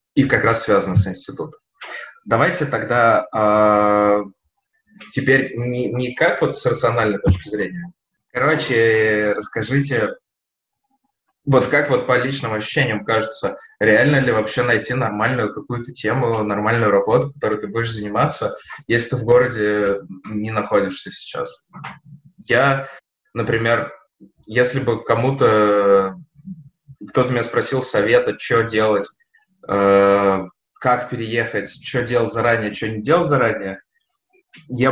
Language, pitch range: Russian, 105-140 Hz